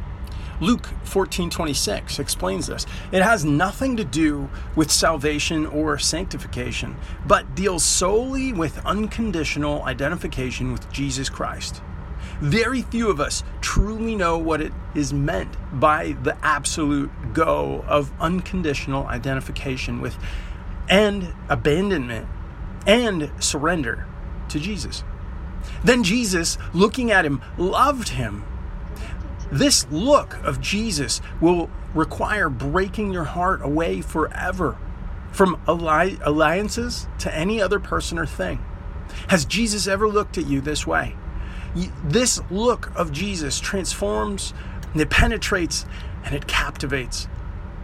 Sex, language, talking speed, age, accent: male, English, 115 wpm, 40-59, American